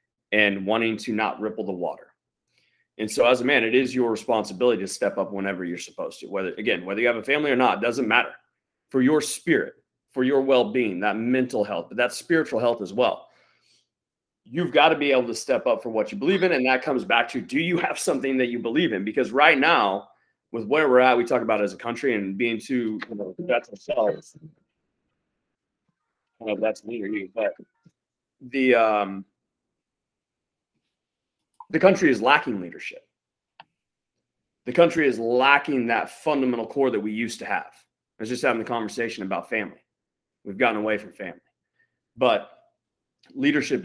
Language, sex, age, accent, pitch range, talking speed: English, male, 30-49, American, 105-140 Hz, 190 wpm